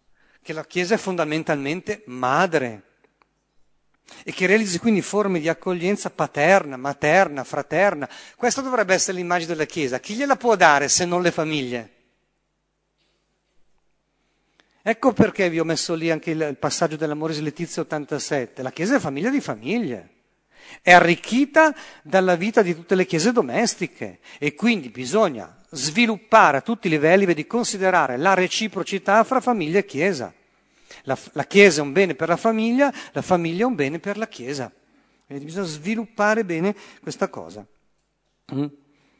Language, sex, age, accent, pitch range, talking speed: Italian, male, 50-69, native, 155-225 Hz, 150 wpm